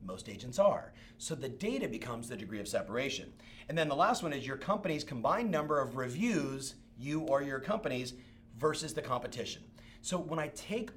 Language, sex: English, male